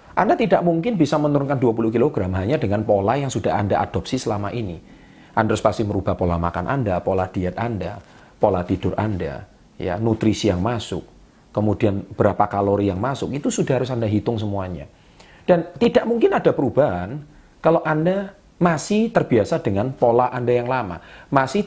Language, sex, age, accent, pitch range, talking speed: Indonesian, male, 40-59, native, 100-150 Hz, 165 wpm